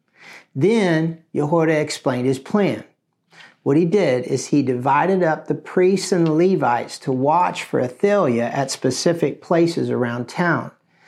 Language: English